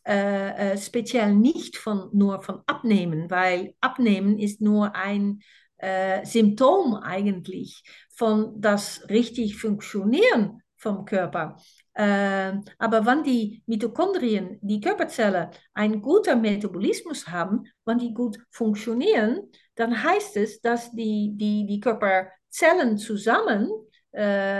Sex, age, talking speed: female, 50-69, 110 wpm